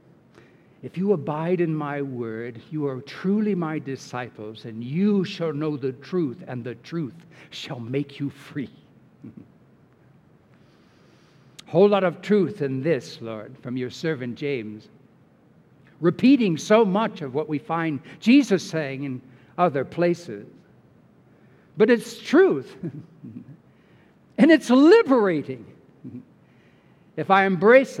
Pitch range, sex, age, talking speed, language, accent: 125-165 Hz, male, 60-79, 120 wpm, English, American